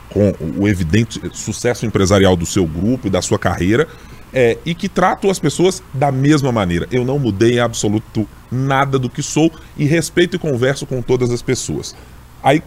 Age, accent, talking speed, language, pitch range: 20-39, Brazilian, 185 wpm, Portuguese, 95-135 Hz